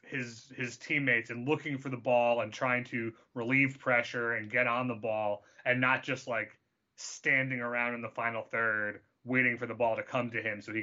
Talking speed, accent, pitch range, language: 210 wpm, American, 120-145 Hz, English